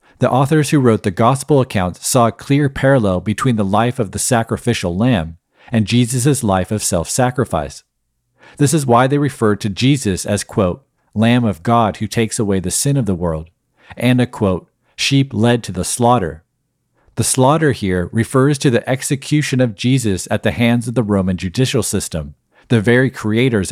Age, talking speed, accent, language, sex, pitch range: 40-59, 180 wpm, American, English, male, 100-130 Hz